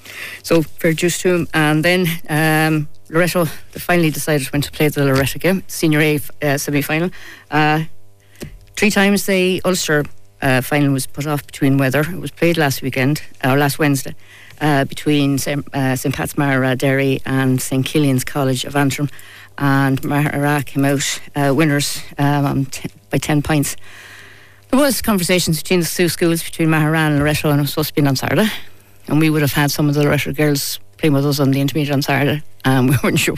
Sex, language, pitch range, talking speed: female, English, 135-155 Hz, 190 wpm